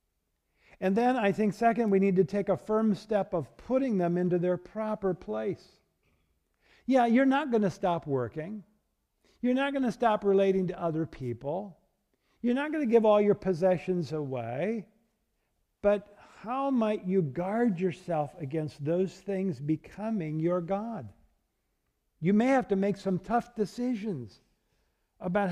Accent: American